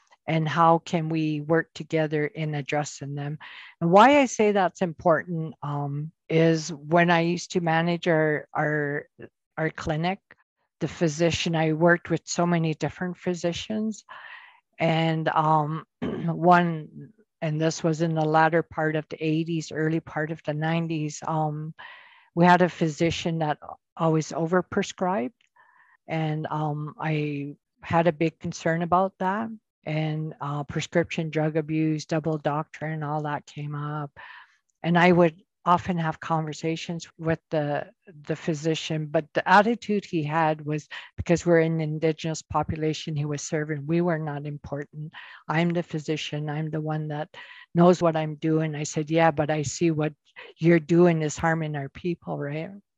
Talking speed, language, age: 150 wpm, English, 50-69